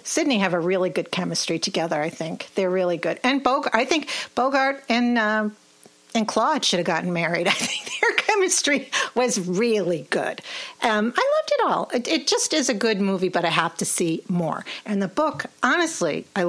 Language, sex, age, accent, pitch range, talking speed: English, female, 50-69, American, 180-270 Hz, 200 wpm